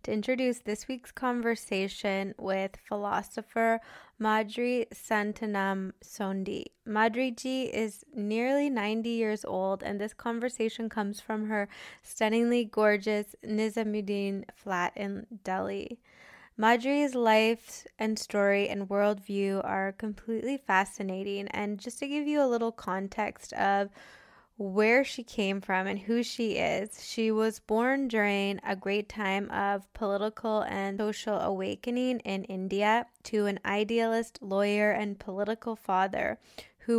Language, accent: English, American